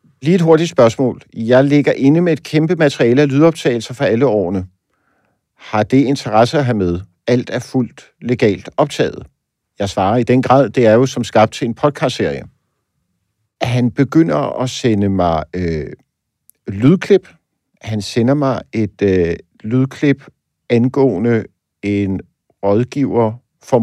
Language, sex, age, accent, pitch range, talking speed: Danish, male, 50-69, native, 105-140 Hz, 145 wpm